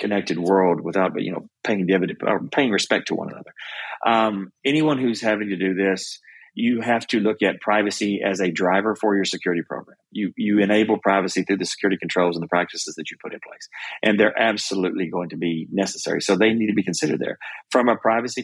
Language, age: English, 40-59